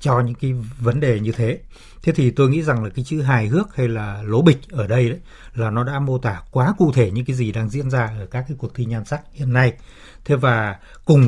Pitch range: 115-145 Hz